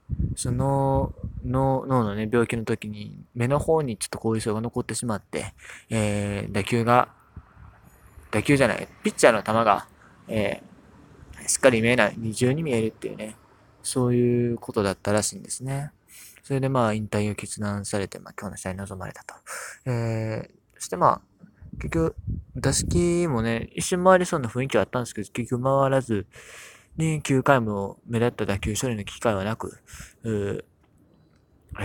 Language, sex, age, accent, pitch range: Japanese, male, 20-39, native, 105-135 Hz